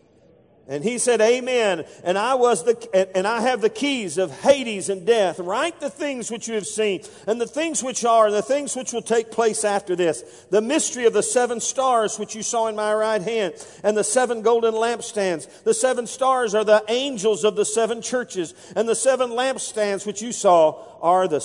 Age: 50-69